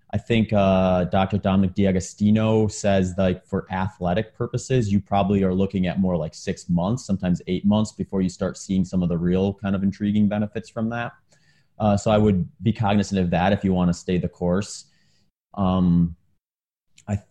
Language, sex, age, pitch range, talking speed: English, male, 30-49, 95-110 Hz, 190 wpm